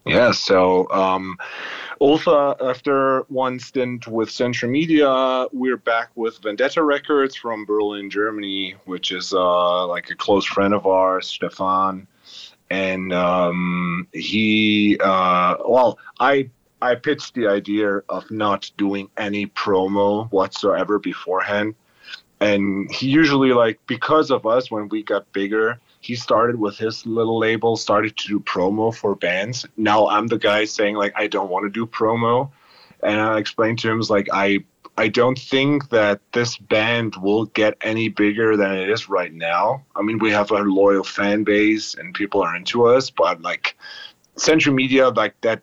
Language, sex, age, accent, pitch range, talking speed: English, male, 30-49, American, 100-120 Hz, 160 wpm